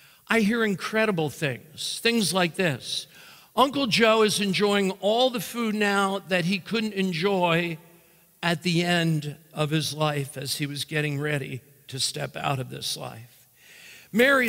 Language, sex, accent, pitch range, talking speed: English, male, American, 145-200 Hz, 155 wpm